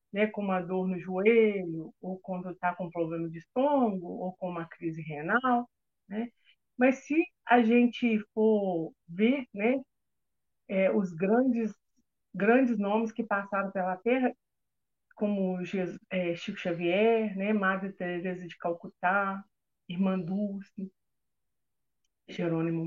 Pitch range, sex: 185-235 Hz, female